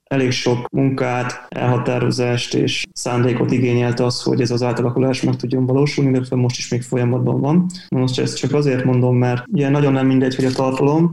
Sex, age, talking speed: male, 20-39, 185 wpm